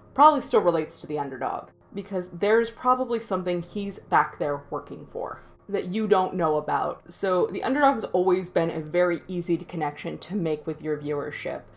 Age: 20-39